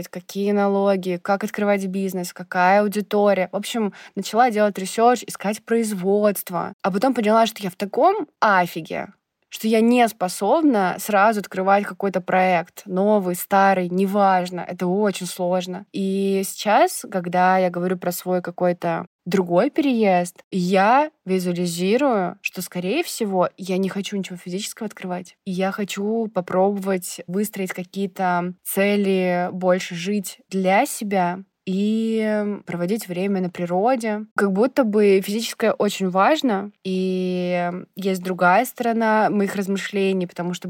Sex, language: female, Russian